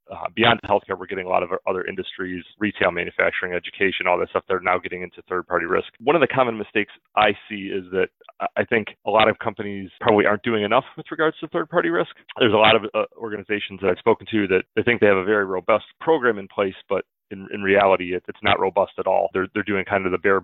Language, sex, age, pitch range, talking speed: English, male, 30-49, 95-110 Hz, 245 wpm